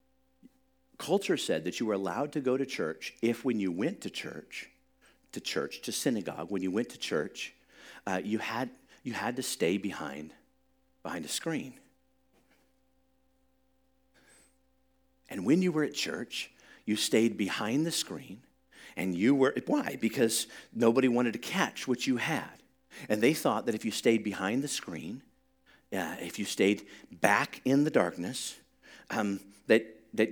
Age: 50-69